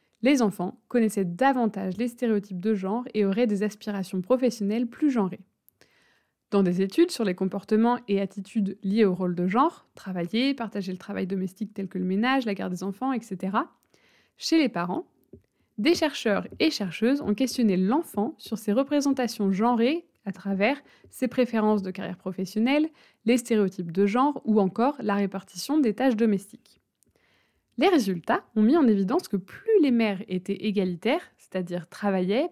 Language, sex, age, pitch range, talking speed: French, female, 20-39, 195-250 Hz, 160 wpm